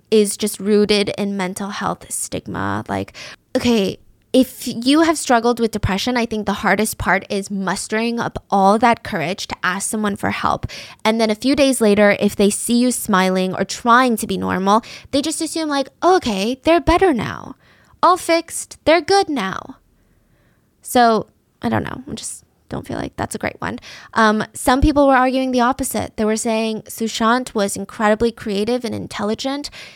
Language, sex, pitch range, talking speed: English, female, 200-240 Hz, 180 wpm